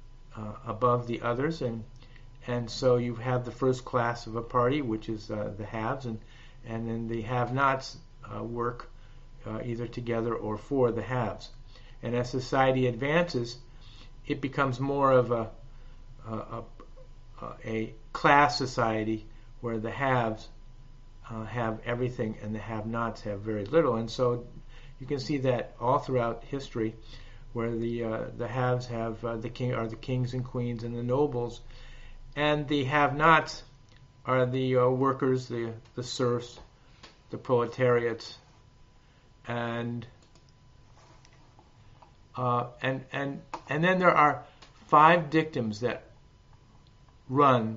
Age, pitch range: 50-69, 115-130 Hz